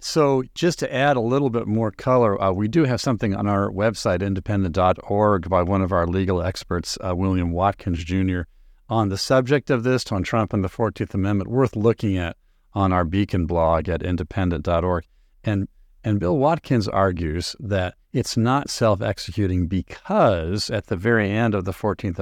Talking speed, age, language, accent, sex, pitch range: 175 wpm, 50-69, English, American, male, 95-115 Hz